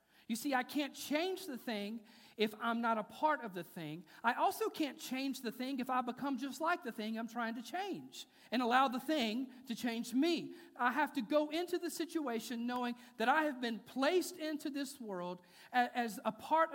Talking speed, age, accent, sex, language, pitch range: 210 wpm, 40-59, American, male, English, 150-250 Hz